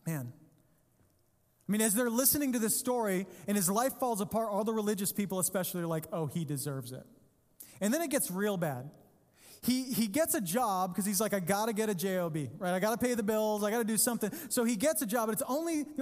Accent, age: American, 30-49